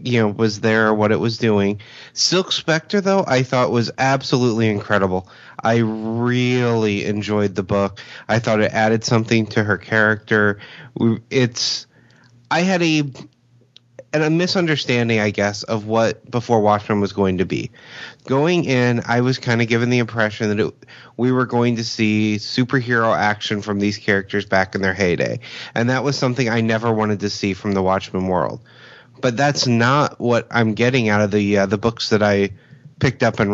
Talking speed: 180 wpm